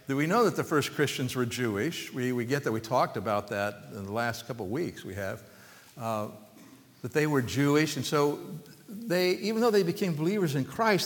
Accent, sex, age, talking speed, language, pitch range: American, male, 60-79, 215 wpm, English, 125-185 Hz